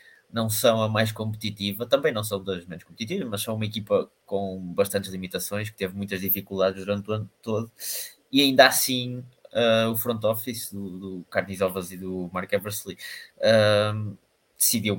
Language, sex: Portuguese, male